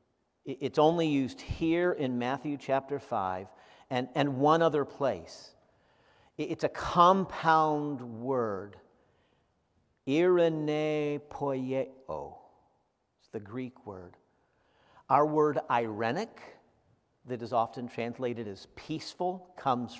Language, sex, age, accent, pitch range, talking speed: English, male, 50-69, American, 115-150 Hz, 100 wpm